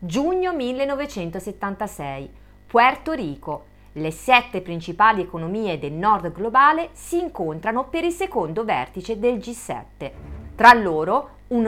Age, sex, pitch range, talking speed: 40-59, female, 175-265 Hz, 115 wpm